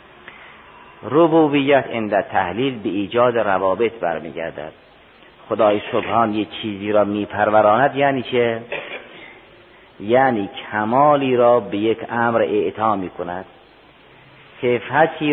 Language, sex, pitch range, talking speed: Persian, male, 105-125 Hz, 100 wpm